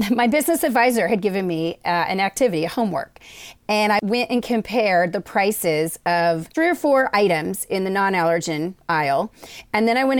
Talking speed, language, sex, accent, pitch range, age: 180 wpm, English, female, American, 190-250 Hz, 30-49